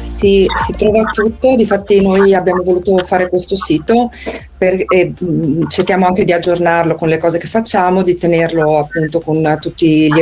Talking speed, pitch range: 170 wpm, 170-200 Hz